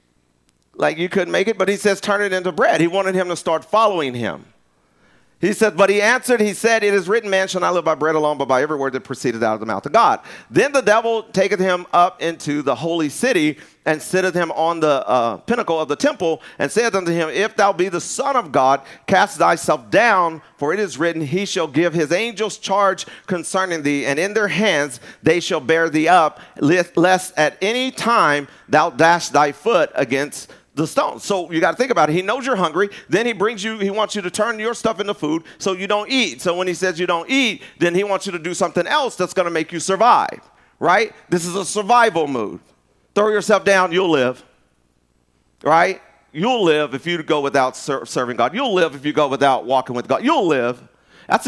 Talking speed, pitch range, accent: 230 wpm, 145-200 Hz, American